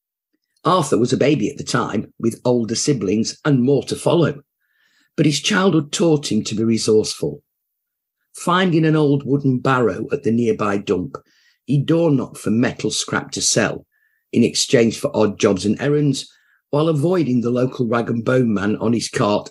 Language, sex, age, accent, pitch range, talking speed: English, male, 50-69, British, 110-145 Hz, 170 wpm